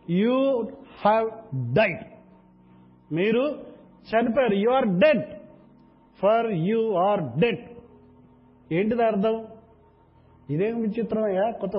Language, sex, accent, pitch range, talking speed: Telugu, male, native, 170-225 Hz, 95 wpm